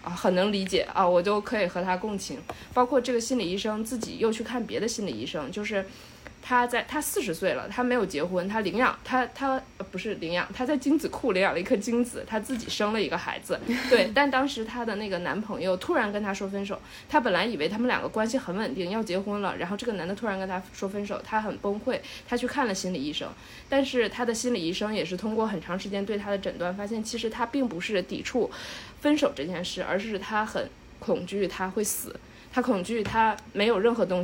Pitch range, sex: 195-245 Hz, female